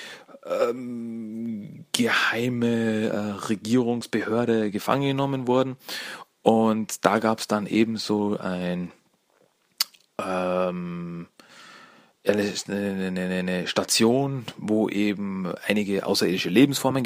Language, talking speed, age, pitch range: German, 90 wpm, 40-59, 105-120 Hz